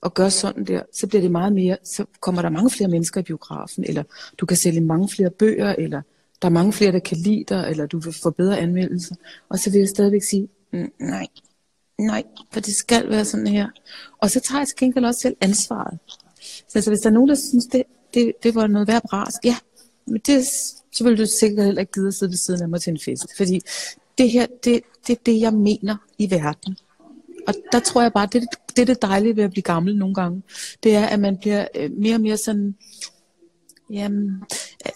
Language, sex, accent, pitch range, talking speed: English, female, Danish, 190-230 Hz, 230 wpm